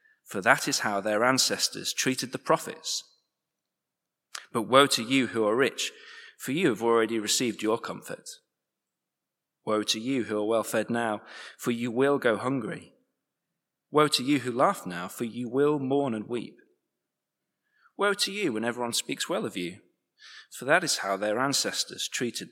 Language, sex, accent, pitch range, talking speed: English, male, British, 115-160 Hz, 170 wpm